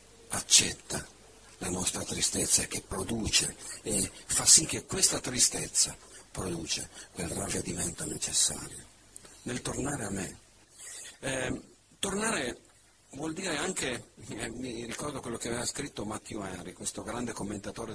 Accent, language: native, Italian